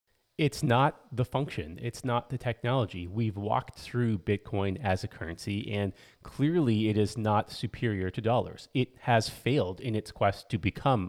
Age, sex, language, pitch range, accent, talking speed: 30-49, male, English, 100-130 Hz, American, 170 wpm